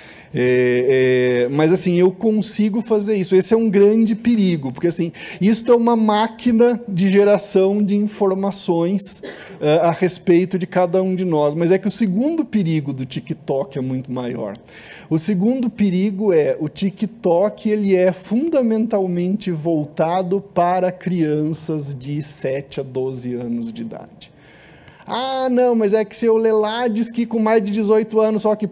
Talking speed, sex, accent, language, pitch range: 160 wpm, male, Brazilian, Portuguese, 150-210 Hz